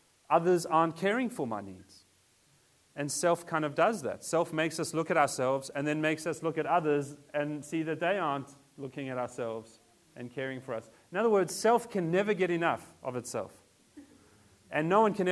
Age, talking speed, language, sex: 30-49, 200 wpm, English, male